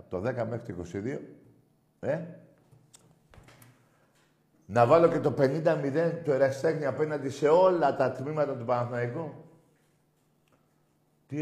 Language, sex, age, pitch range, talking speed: Greek, male, 60-79, 110-140 Hz, 110 wpm